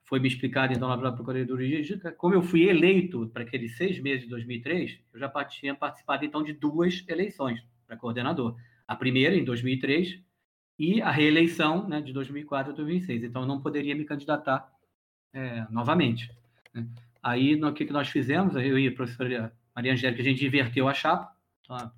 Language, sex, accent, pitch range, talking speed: Portuguese, male, Brazilian, 120-155 Hz, 180 wpm